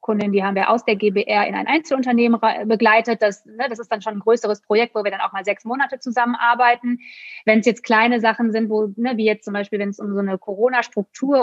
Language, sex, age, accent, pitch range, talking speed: German, female, 20-39, German, 210-240 Hz, 240 wpm